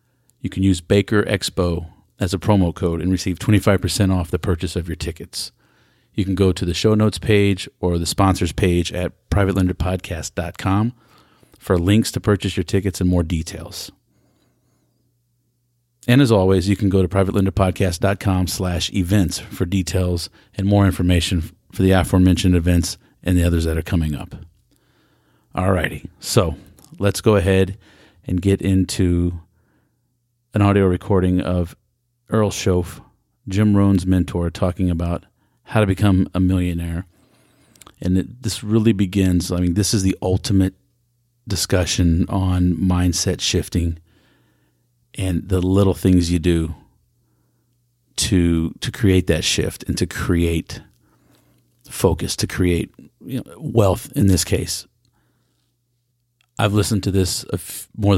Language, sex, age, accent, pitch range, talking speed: English, male, 40-59, American, 90-105 Hz, 135 wpm